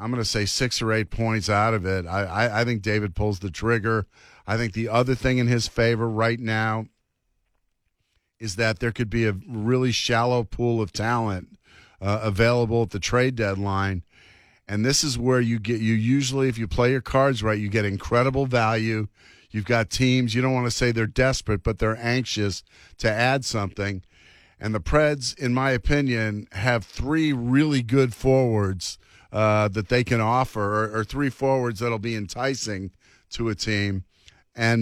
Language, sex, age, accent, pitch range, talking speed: English, male, 50-69, American, 105-125 Hz, 185 wpm